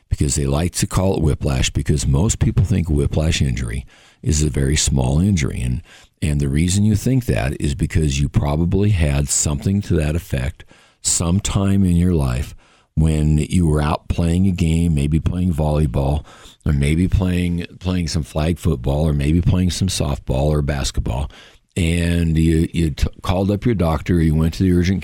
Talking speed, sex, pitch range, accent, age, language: 180 wpm, male, 75-90 Hz, American, 60-79, English